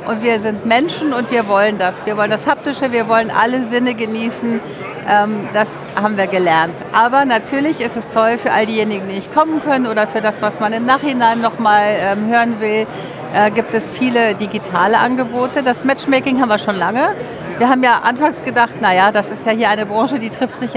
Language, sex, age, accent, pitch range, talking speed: German, female, 50-69, German, 210-245 Hz, 205 wpm